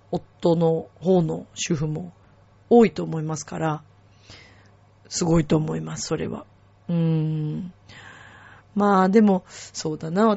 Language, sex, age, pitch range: Japanese, female, 40-59, 155-215 Hz